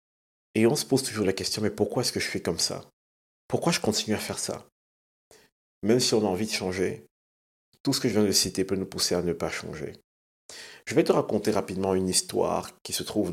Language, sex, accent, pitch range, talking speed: French, male, French, 90-105 Hz, 235 wpm